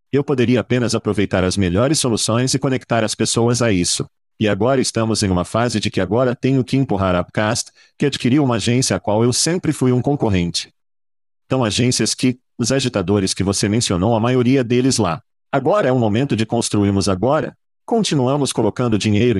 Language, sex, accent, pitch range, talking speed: Portuguese, male, Brazilian, 100-125 Hz, 185 wpm